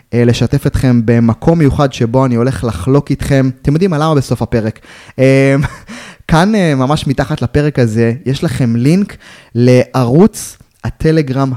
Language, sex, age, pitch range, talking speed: Hebrew, male, 20-39, 120-150 Hz, 130 wpm